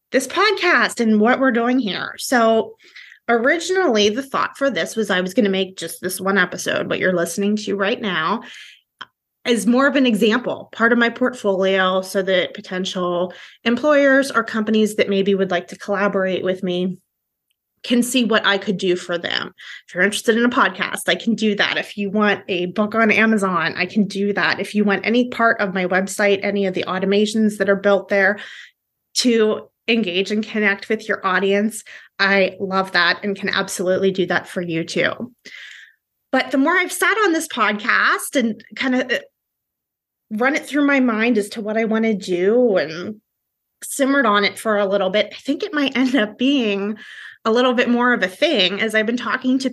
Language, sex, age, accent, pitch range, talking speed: English, female, 20-39, American, 195-245 Hz, 200 wpm